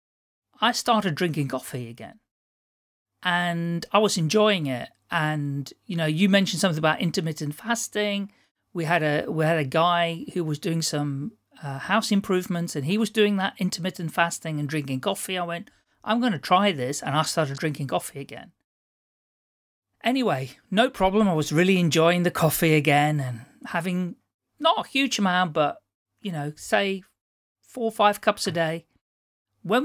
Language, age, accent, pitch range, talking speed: English, 40-59, British, 150-210 Hz, 165 wpm